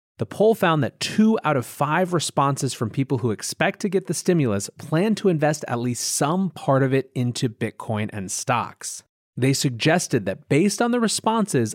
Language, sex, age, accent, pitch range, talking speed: English, male, 30-49, American, 115-165 Hz, 190 wpm